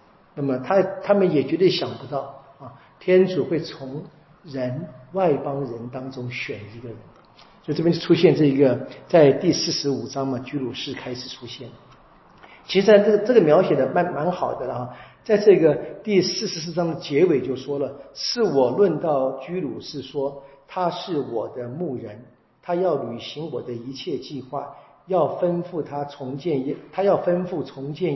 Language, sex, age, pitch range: Chinese, male, 50-69, 135-180 Hz